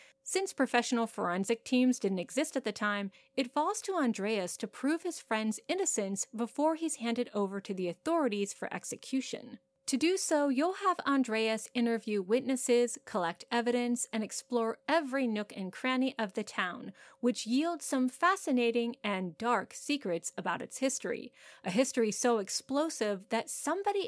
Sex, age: female, 30-49